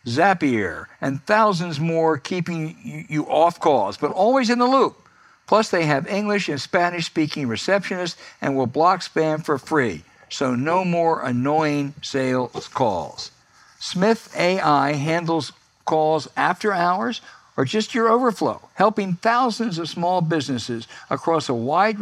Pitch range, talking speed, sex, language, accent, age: 135-180 Hz, 135 wpm, male, English, American, 60-79